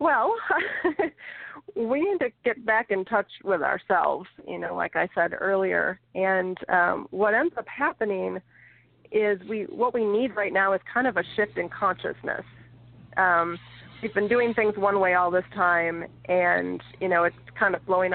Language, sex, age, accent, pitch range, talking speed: English, female, 30-49, American, 170-200 Hz, 175 wpm